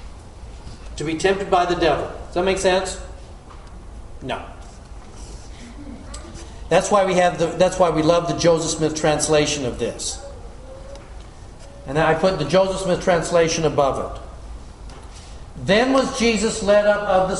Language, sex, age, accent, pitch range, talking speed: English, male, 50-69, American, 140-185 Hz, 145 wpm